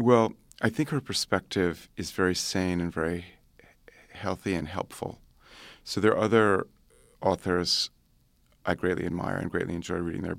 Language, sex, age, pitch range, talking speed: English, male, 30-49, 85-100 Hz, 150 wpm